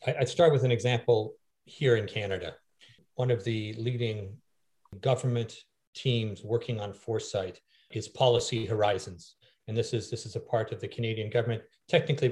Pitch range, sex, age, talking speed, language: 105-125 Hz, male, 40-59, 155 wpm, English